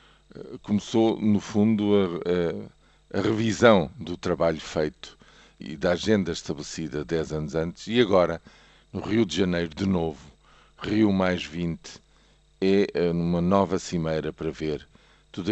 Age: 50-69